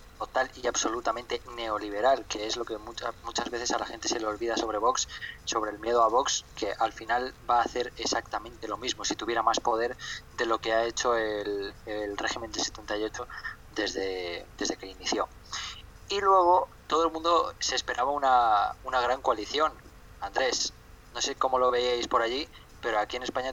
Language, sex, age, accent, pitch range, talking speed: Spanish, male, 20-39, Spanish, 105-125 Hz, 185 wpm